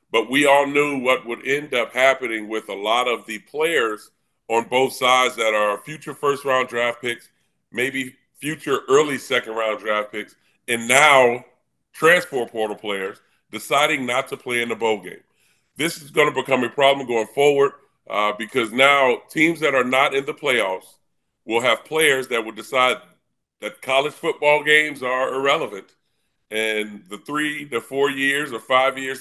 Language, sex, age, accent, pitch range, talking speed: English, female, 40-59, American, 115-140 Hz, 175 wpm